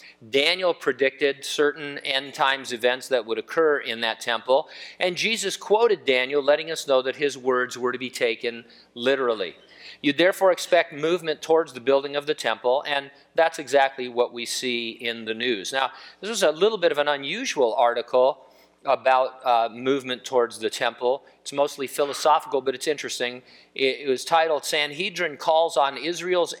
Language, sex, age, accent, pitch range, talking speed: English, male, 50-69, American, 120-160 Hz, 170 wpm